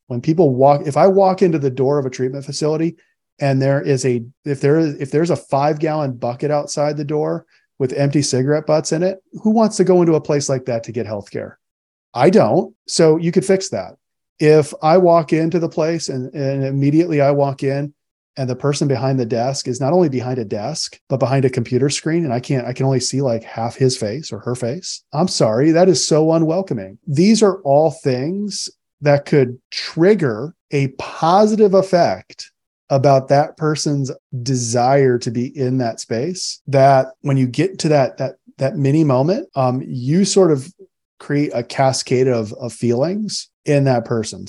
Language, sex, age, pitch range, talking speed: English, male, 40-59, 125-160 Hz, 195 wpm